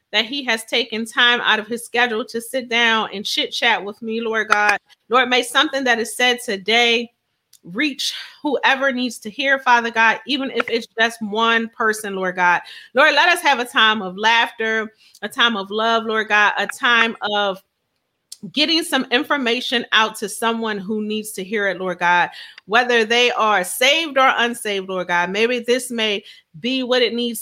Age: 30-49